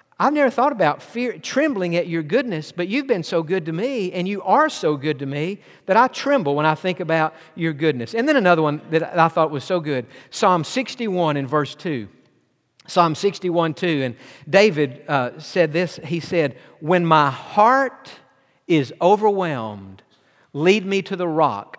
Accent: American